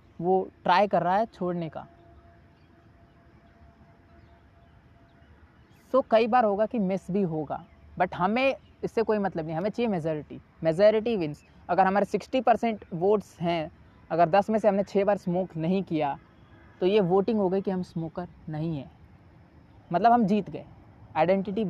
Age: 20-39